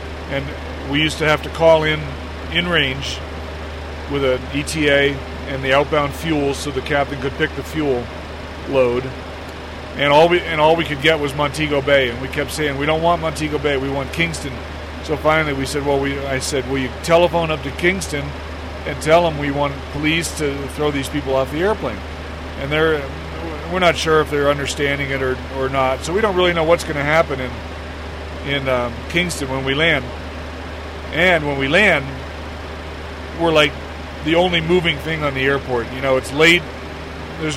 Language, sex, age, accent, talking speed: English, male, 40-59, American, 195 wpm